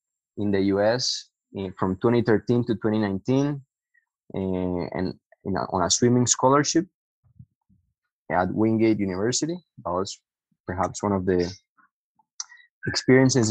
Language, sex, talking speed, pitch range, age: English, male, 100 wpm, 95-125 Hz, 20-39